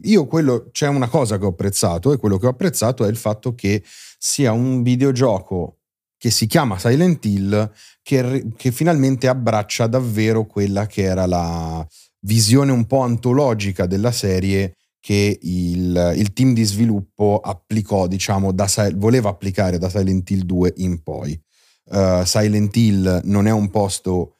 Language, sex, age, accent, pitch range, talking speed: Italian, male, 30-49, native, 95-110 Hz, 155 wpm